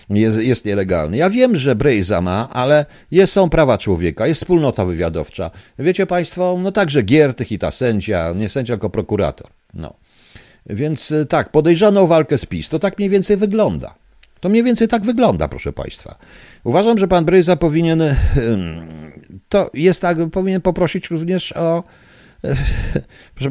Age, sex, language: 50-69, male, Polish